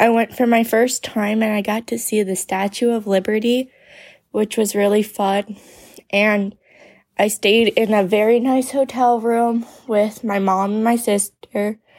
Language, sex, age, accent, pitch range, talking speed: English, female, 20-39, American, 200-235 Hz, 170 wpm